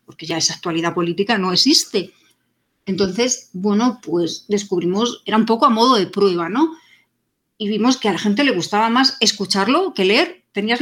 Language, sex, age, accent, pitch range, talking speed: Spanish, female, 40-59, Spanish, 180-245 Hz, 175 wpm